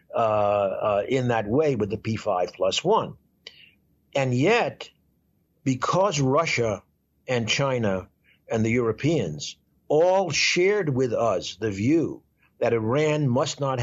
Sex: male